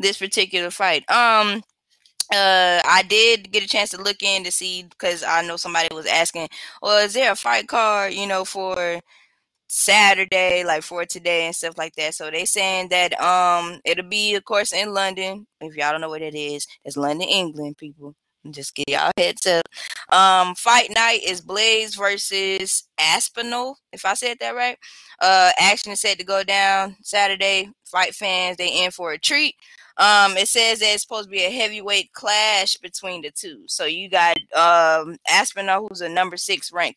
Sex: female